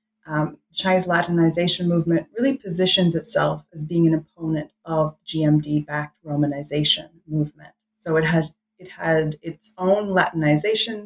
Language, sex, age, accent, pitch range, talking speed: English, female, 20-39, American, 160-190 Hz, 125 wpm